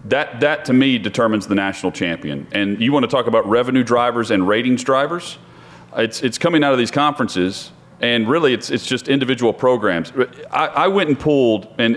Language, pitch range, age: English, 110-145 Hz, 40-59